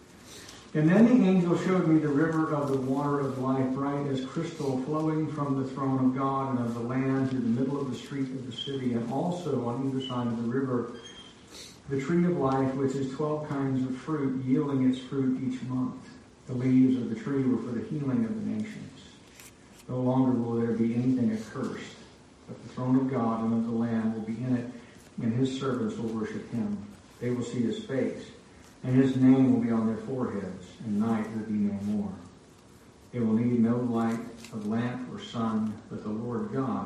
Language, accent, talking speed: English, American, 210 wpm